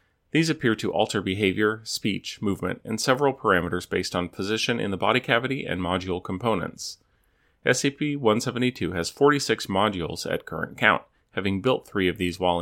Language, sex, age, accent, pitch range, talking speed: English, male, 30-49, American, 90-120 Hz, 155 wpm